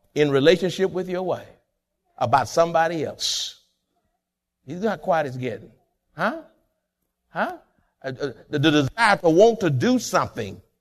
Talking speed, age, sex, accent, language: 135 wpm, 60-79, male, American, English